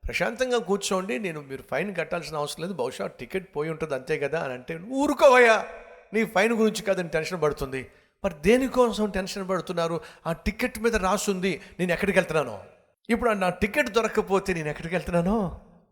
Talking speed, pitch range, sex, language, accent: 160 wpm, 110-180 Hz, male, Telugu, native